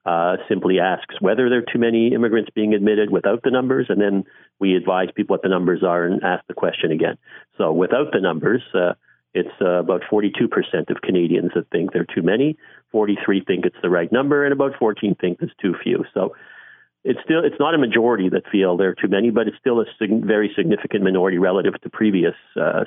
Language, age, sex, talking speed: English, 50-69, male, 220 wpm